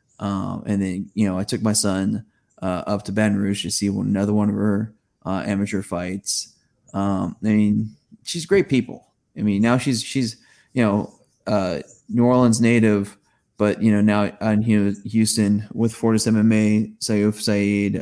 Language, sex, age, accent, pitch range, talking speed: English, male, 20-39, American, 100-115 Hz, 175 wpm